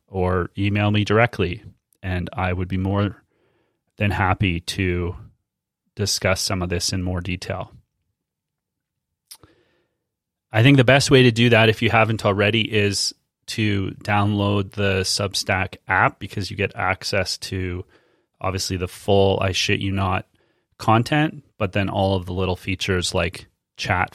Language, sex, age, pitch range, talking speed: English, male, 30-49, 95-110 Hz, 145 wpm